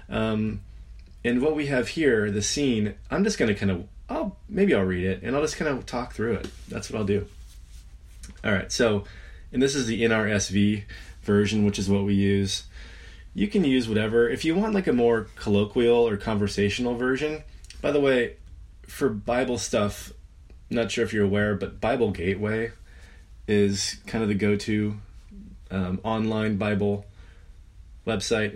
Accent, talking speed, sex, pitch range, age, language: American, 170 wpm, male, 95-110 Hz, 20-39, English